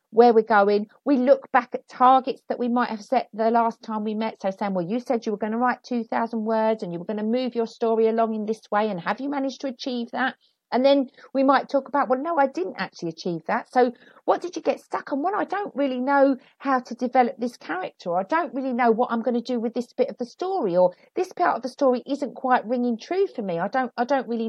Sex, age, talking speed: female, 40-59, 270 wpm